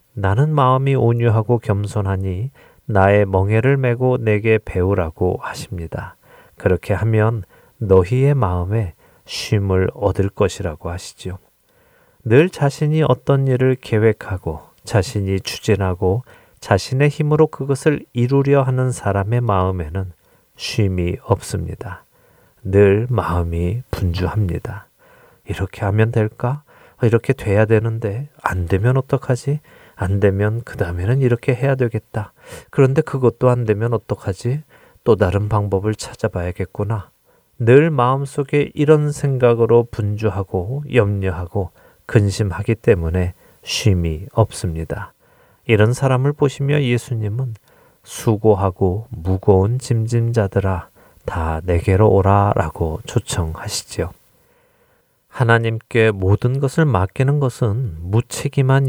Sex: male